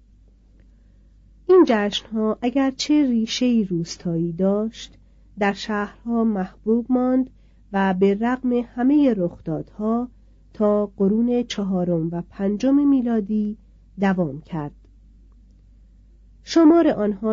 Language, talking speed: Persian, 95 wpm